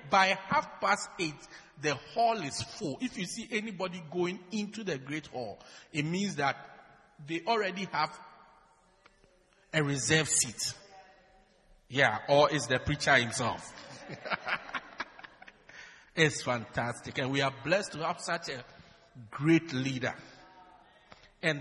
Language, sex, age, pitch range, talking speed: English, male, 50-69, 135-190 Hz, 125 wpm